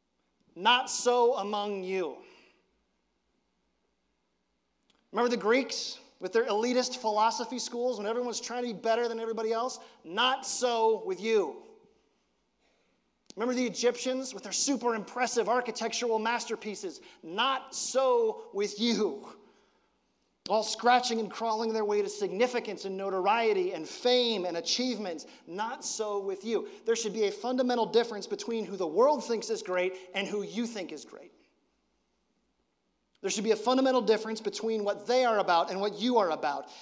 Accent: American